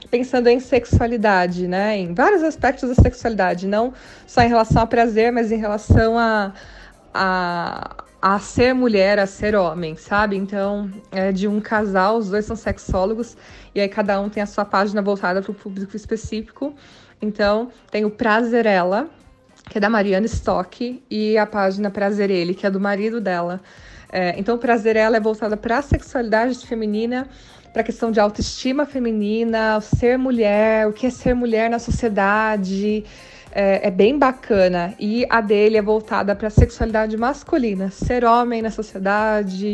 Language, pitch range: Portuguese, 195-230 Hz